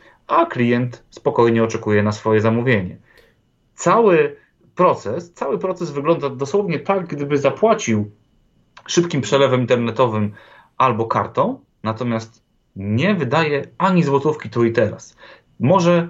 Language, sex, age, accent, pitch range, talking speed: Polish, male, 30-49, native, 110-155 Hz, 110 wpm